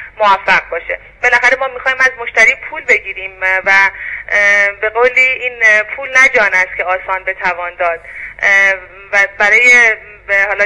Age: 30-49